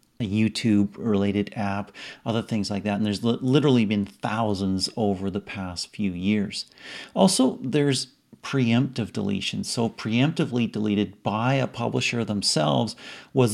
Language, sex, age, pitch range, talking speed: English, male, 40-59, 105-125 Hz, 135 wpm